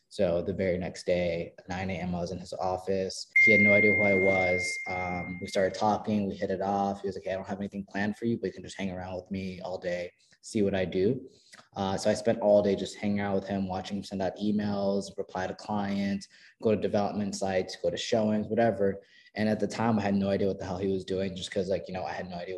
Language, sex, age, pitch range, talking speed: English, male, 20-39, 95-105 Hz, 270 wpm